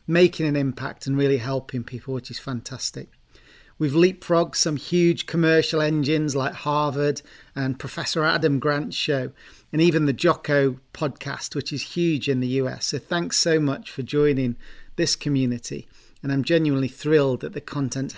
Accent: British